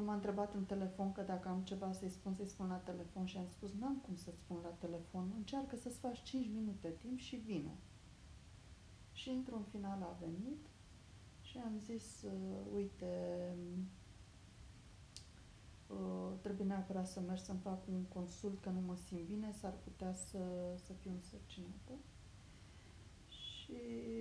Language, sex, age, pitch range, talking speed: Romanian, female, 30-49, 175-215 Hz, 155 wpm